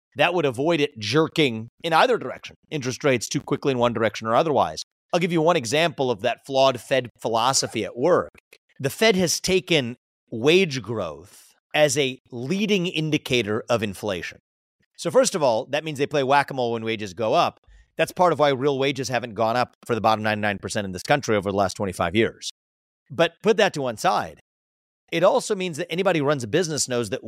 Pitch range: 115-165 Hz